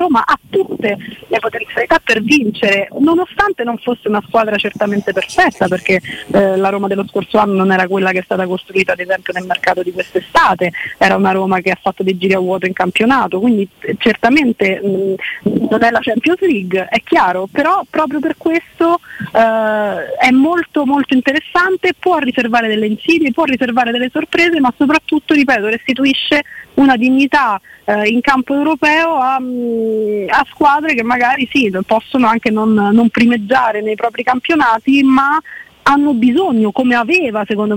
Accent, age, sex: native, 30-49, female